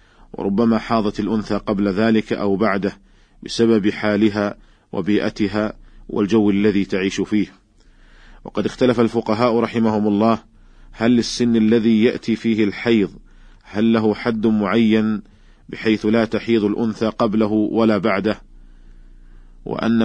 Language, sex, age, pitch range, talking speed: Arabic, male, 40-59, 100-115 Hz, 110 wpm